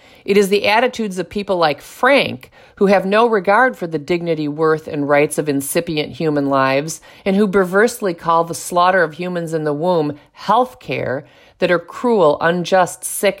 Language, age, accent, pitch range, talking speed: English, 50-69, American, 160-200 Hz, 180 wpm